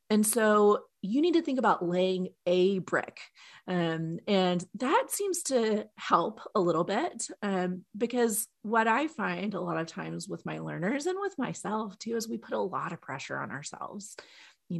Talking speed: 185 wpm